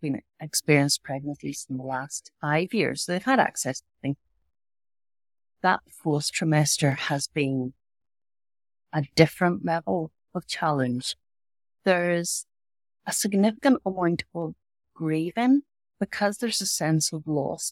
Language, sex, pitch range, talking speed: English, female, 135-185 Hz, 120 wpm